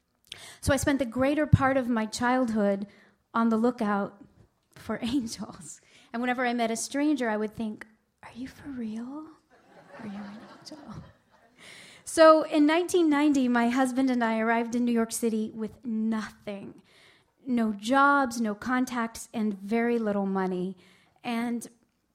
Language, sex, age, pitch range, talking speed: English, female, 40-59, 215-265 Hz, 145 wpm